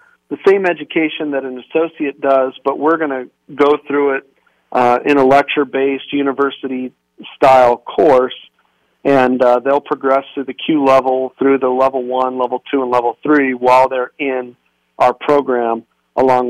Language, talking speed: English, 155 wpm